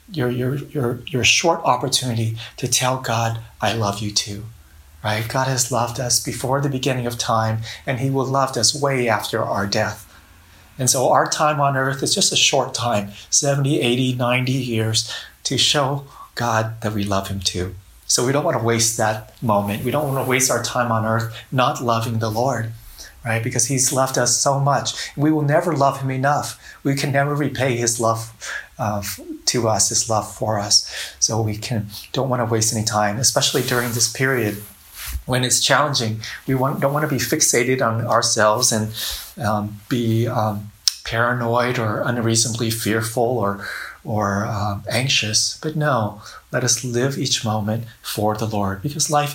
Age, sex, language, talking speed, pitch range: 30-49, male, English, 185 wpm, 110-130 Hz